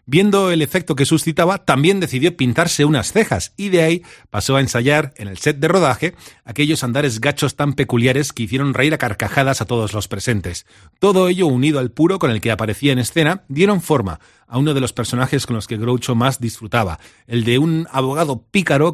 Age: 40-59